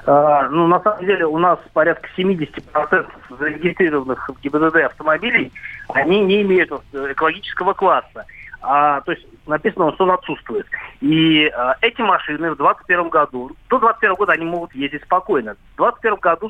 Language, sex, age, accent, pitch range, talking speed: Russian, male, 30-49, native, 150-185 Hz, 155 wpm